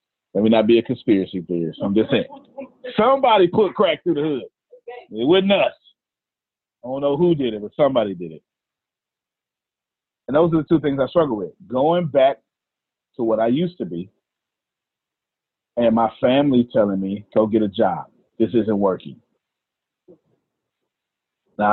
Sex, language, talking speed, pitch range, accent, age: male, English, 165 wpm, 120-175 Hz, American, 40-59